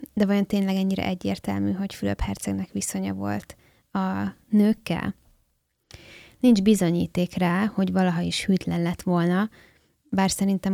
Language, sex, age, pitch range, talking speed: Hungarian, female, 20-39, 175-200 Hz, 130 wpm